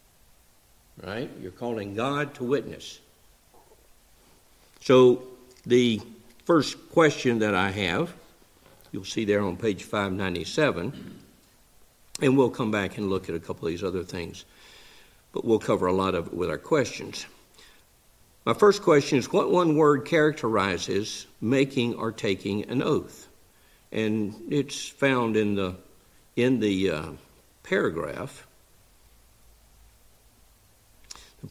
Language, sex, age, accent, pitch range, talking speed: English, male, 60-79, American, 100-130 Hz, 125 wpm